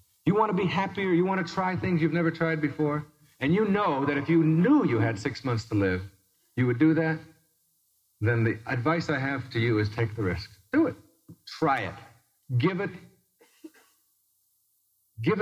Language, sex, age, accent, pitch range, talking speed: English, male, 50-69, American, 105-160 Hz, 185 wpm